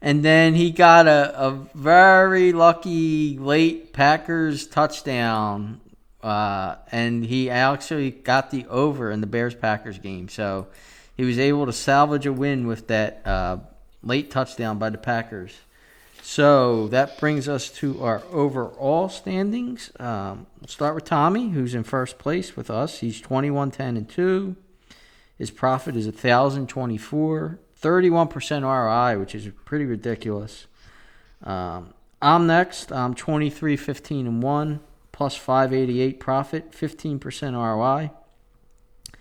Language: English